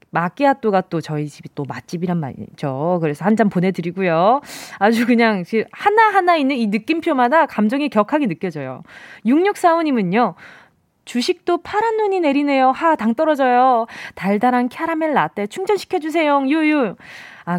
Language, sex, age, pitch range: Korean, female, 20-39, 195-300 Hz